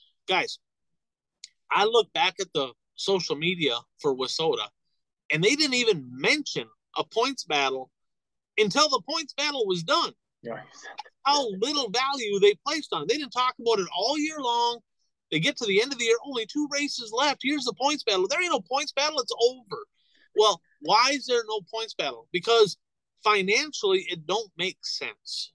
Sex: male